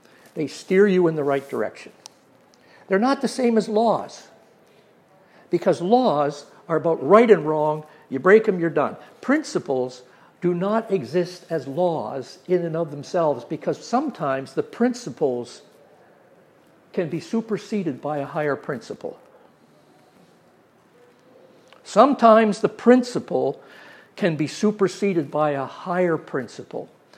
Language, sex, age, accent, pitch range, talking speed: English, male, 60-79, American, 150-190 Hz, 130 wpm